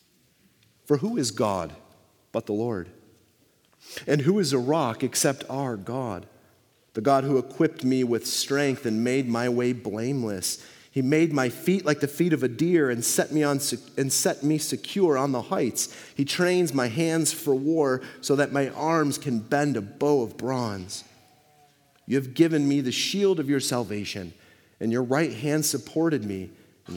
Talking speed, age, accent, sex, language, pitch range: 180 wpm, 40-59, American, male, English, 115-150 Hz